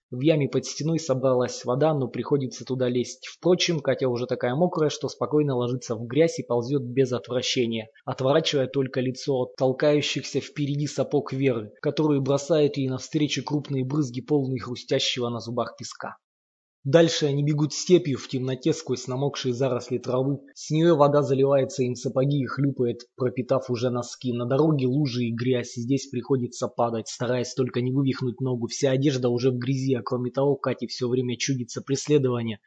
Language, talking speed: Russian, 165 wpm